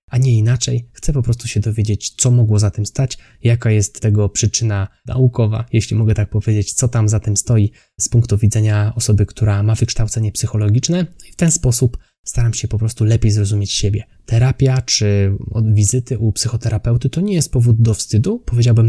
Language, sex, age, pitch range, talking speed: Polish, male, 20-39, 105-120 Hz, 185 wpm